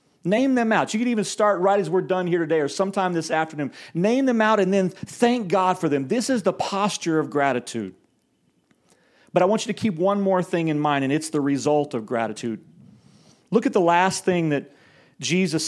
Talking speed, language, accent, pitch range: 215 wpm, English, American, 165-220 Hz